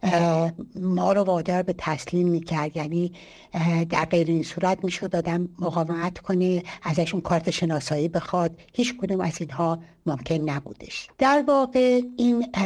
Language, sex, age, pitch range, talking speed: Persian, female, 60-79, 170-200 Hz, 140 wpm